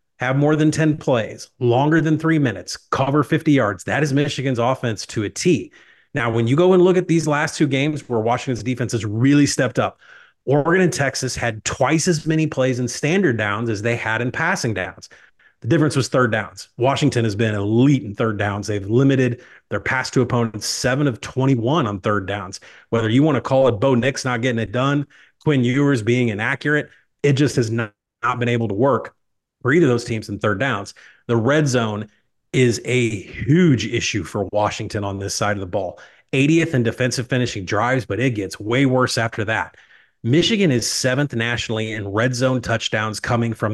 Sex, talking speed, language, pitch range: male, 200 wpm, English, 110-140 Hz